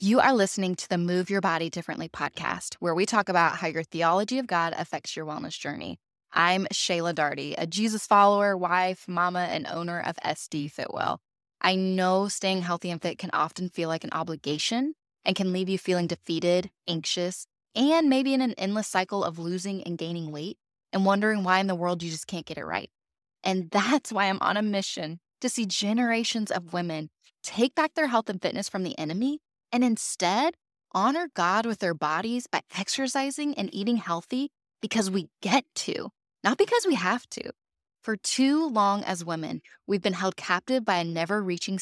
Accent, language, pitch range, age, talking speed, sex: American, English, 175-235 Hz, 10-29, 190 wpm, female